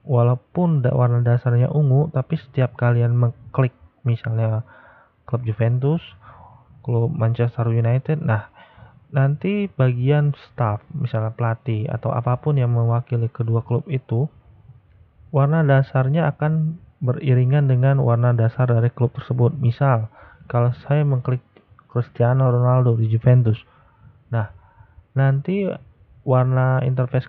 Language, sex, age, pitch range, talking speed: Indonesian, male, 30-49, 115-135 Hz, 110 wpm